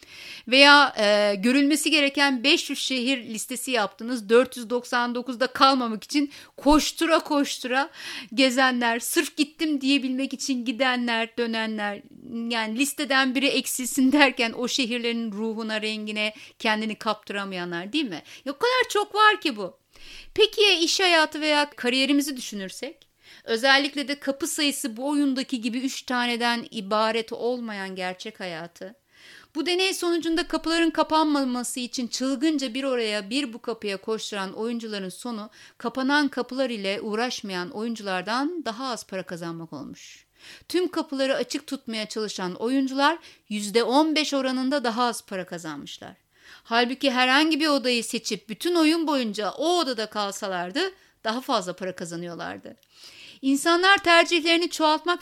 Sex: female